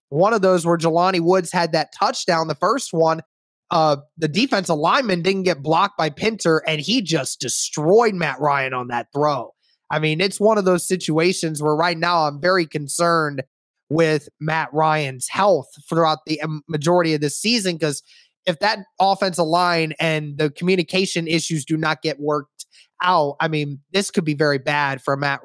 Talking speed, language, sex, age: 180 wpm, English, male, 20-39